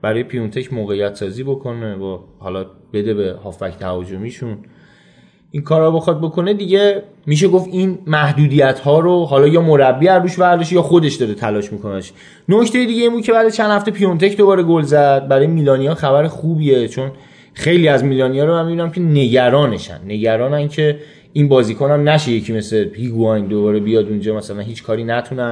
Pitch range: 125-175 Hz